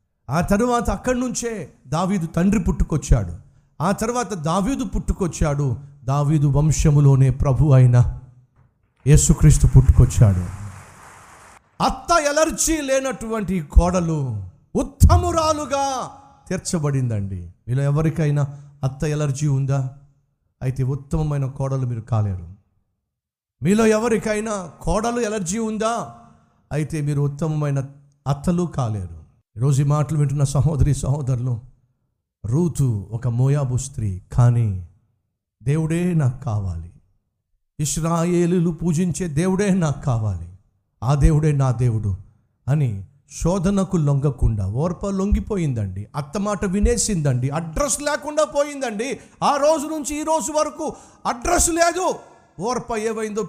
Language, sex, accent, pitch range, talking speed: Telugu, male, native, 125-195 Hz, 100 wpm